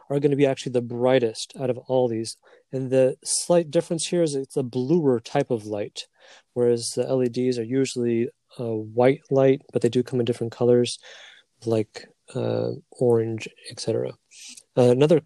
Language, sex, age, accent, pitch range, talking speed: English, male, 30-49, American, 120-145 Hz, 170 wpm